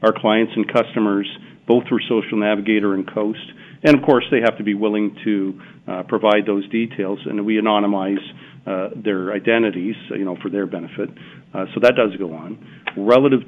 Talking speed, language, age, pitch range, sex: 185 wpm, English, 50-69, 100-120 Hz, male